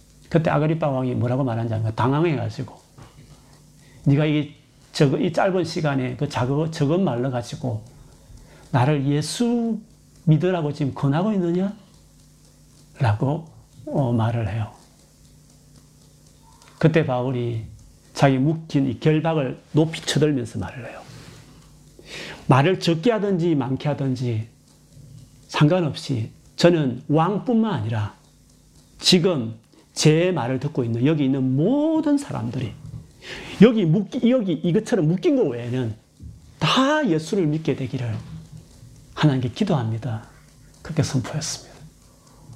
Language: Korean